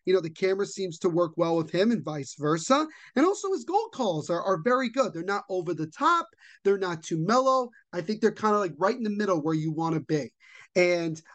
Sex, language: male, English